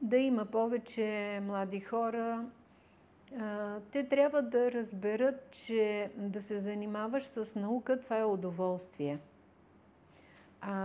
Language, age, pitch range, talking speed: Bulgarian, 50-69, 195-230 Hz, 105 wpm